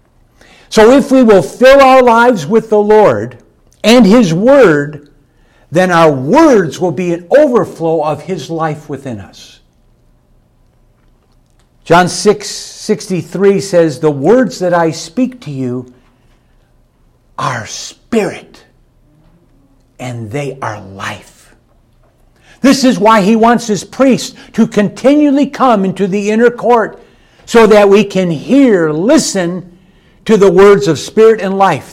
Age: 50-69